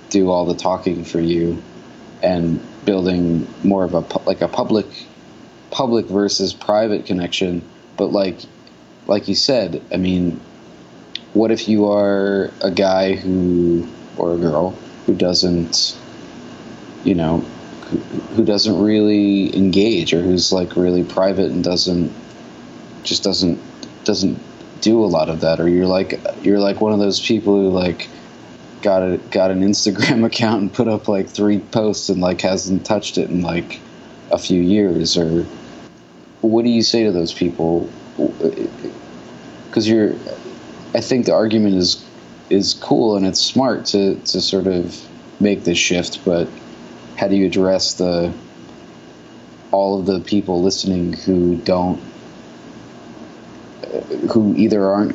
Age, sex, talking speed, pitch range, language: 20-39, male, 145 wpm, 90-105 Hz, English